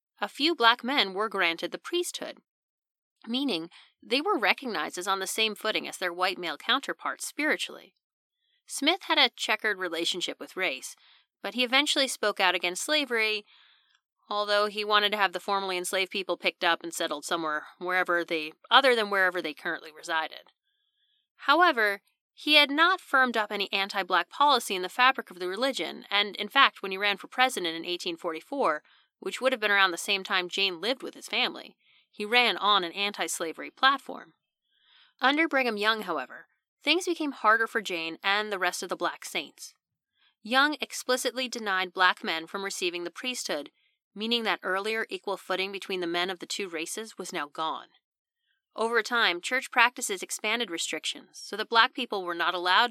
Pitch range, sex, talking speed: 185-260 Hz, female, 175 wpm